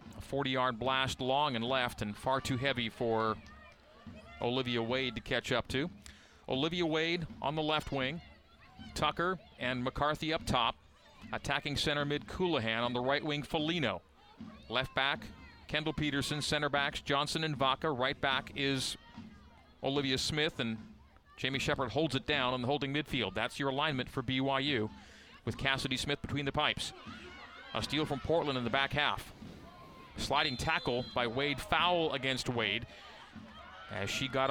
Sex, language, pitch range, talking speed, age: male, English, 125-145 Hz, 155 wpm, 40-59